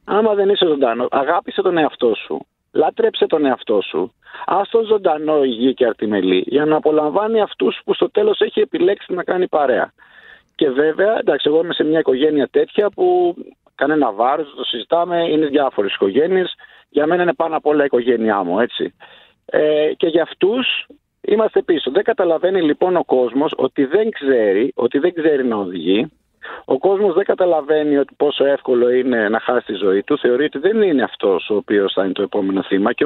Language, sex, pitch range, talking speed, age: Greek, male, 125-200 Hz, 180 wpm, 50-69